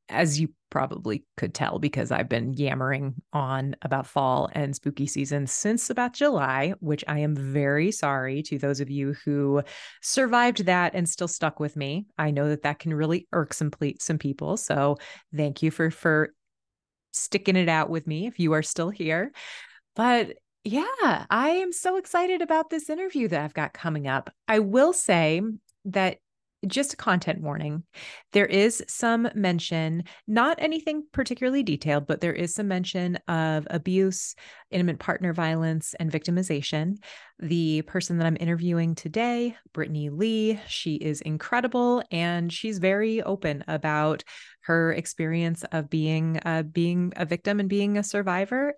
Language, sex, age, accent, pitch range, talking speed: English, female, 30-49, American, 155-205 Hz, 160 wpm